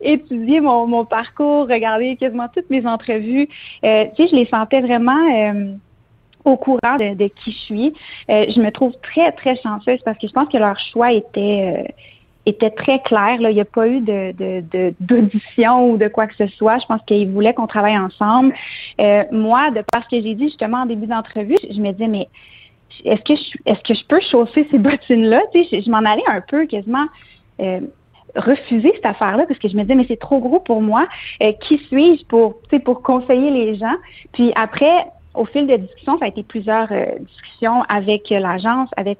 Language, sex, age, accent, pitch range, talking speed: French, female, 30-49, Canadian, 210-260 Hz, 210 wpm